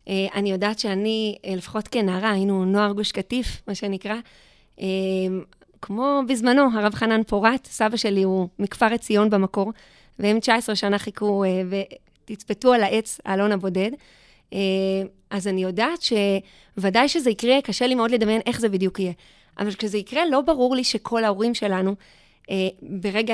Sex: female